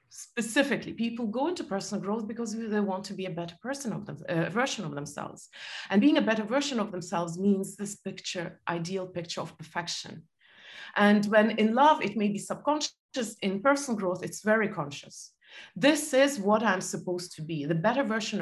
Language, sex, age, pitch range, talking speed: English, female, 30-49, 180-230 Hz, 190 wpm